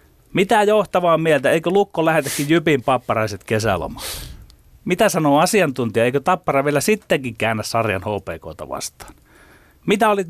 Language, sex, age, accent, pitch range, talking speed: Finnish, male, 30-49, native, 105-150 Hz, 130 wpm